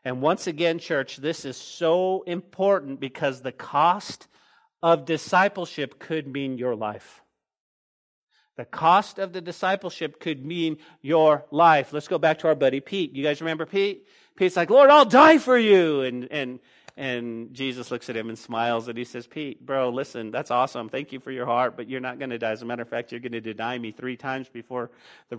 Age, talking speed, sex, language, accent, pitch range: 40-59, 205 wpm, male, English, American, 120-160 Hz